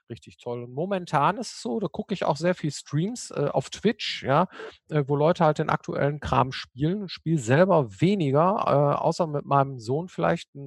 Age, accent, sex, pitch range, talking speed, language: 50-69, German, male, 130-165 Hz, 210 wpm, German